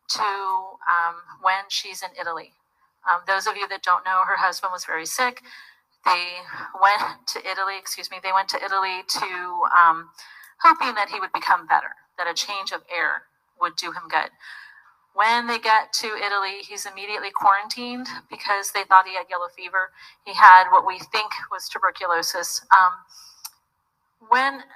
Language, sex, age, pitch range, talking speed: English, female, 30-49, 180-215 Hz, 165 wpm